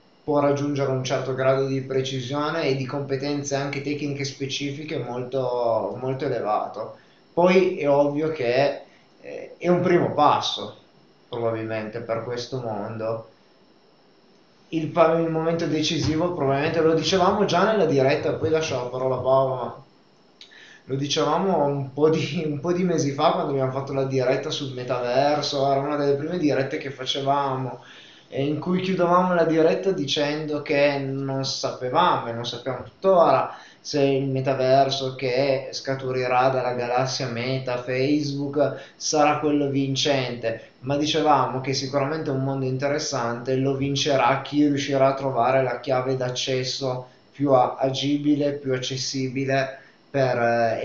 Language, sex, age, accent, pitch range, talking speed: Italian, male, 20-39, native, 130-150 Hz, 135 wpm